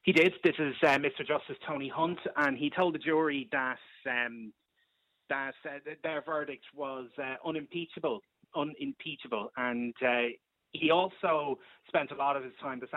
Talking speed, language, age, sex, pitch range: 165 wpm, English, 30-49, male, 120-145 Hz